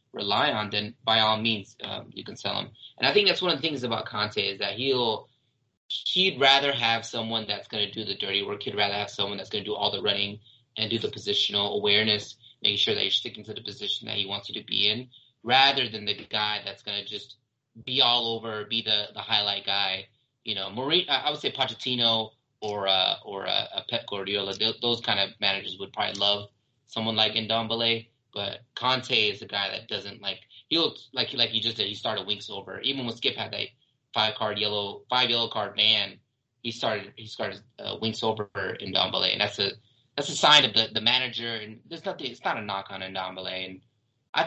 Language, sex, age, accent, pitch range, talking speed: English, male, 20-39, American, 105-125 Hz, 225 wpm